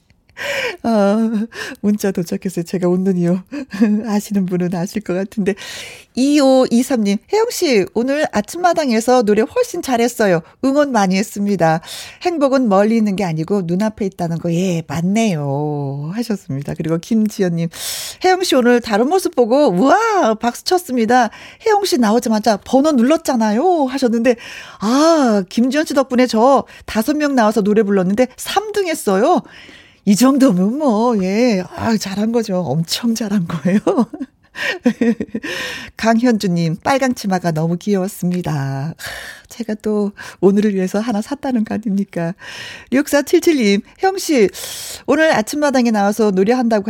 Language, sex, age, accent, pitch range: Korean, female, 40-59, native, 195-265 Hz